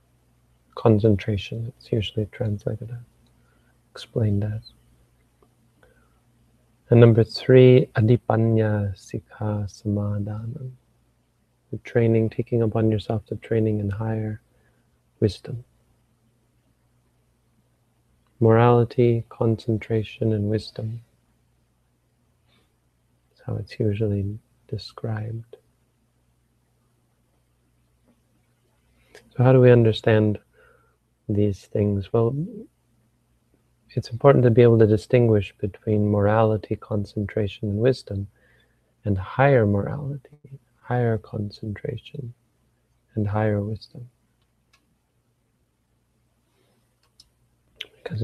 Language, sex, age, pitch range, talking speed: English, male, 30-49, 105-120 Hz, 75 wpm